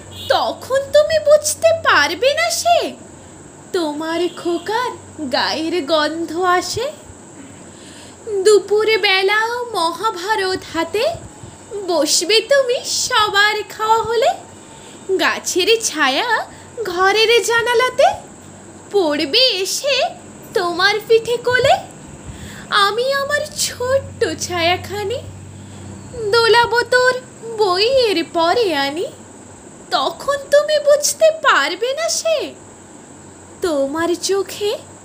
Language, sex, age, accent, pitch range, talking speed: Bengali, female, 20-39, native, 330-460 Hz, 30 wpm